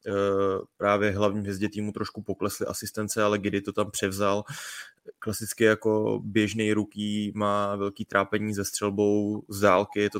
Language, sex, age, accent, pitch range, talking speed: Czech, male, 20-39, native, 100-105 Hz, 140 wpm